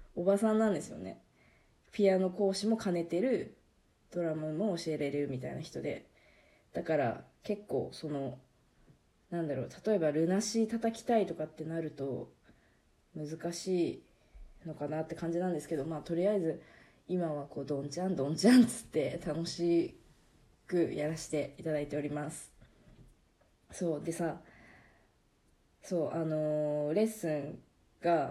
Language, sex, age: Japanese, female, 20-39